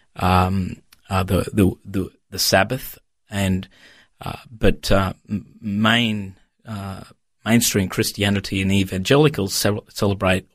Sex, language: male, English